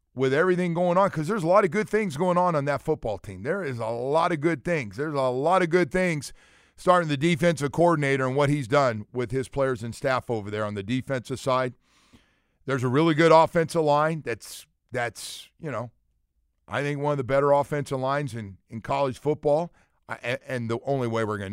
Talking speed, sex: 215 wpm, male